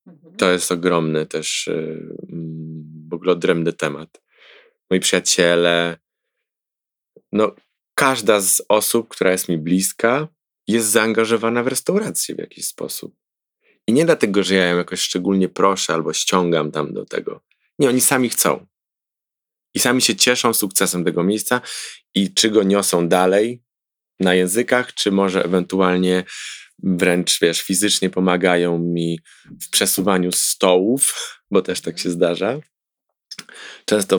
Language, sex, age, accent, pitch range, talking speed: Polish, male, 20-39, native, 85-100 Hz, 130 wpm